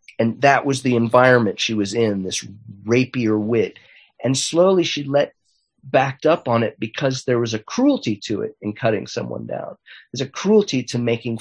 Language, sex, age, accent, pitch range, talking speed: English, male, 40-59, American, 110-140 Hz, 185 wpm